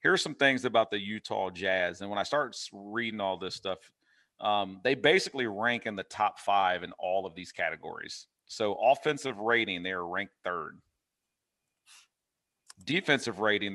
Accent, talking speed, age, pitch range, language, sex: American, 160 wpm, 40-59, 95-125 Hz, English, male